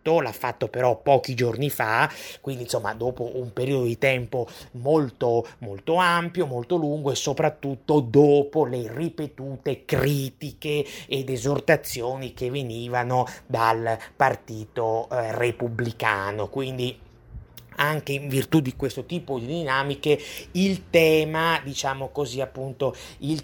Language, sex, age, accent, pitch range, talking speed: Italian, male, 30-49, native, 115-140 Hz, 120 wpm